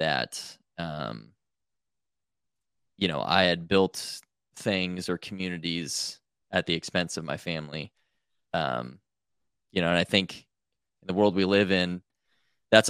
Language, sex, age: English, male, 20-39